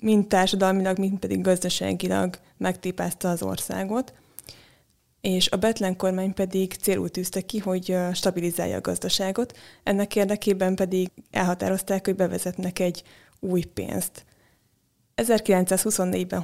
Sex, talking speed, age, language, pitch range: female, 110 wpm, 20-39, Hungarian, 180-205 Hz